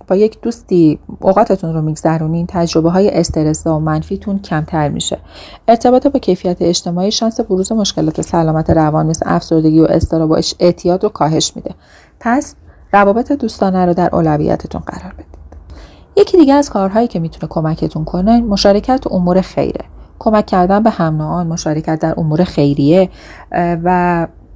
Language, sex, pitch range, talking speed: Persian, female, 160-205 Hz, 150 wpm